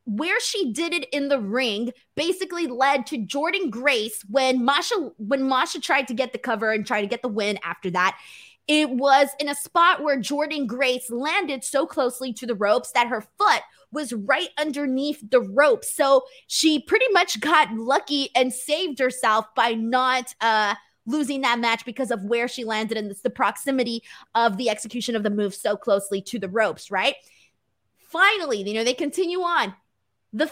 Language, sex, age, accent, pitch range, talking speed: English, female, 20-39, American, 225-305 Hz, 185 wpm